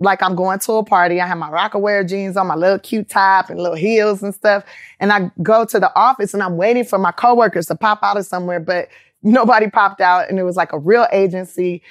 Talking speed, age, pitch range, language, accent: 245 wpm, 20-39, 185-235 Hz, English, American